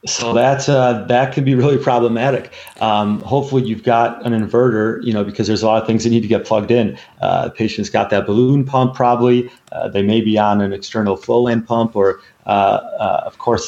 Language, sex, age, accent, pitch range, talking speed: English, male, 30-49, American, 105-120 Hz, 225 wpm